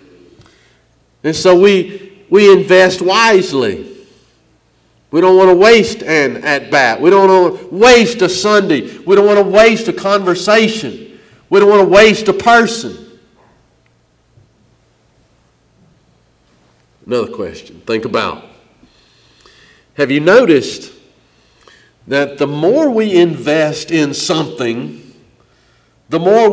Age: 50-69